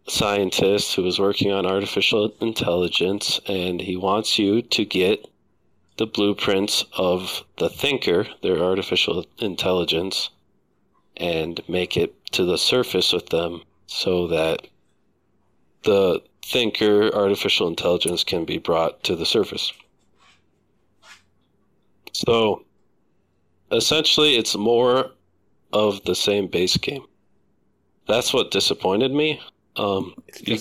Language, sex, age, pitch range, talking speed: English, male, 40-59, 95-110 Hz, 110 wpm